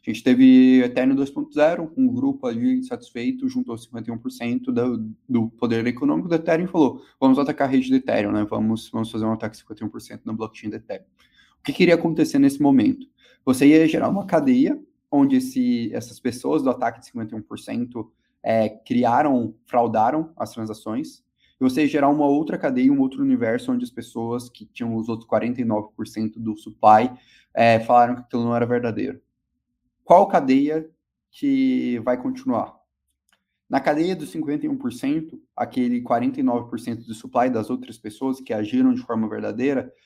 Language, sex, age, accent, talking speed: Portuguese, male, 20-39, Brazilian, 165 wpm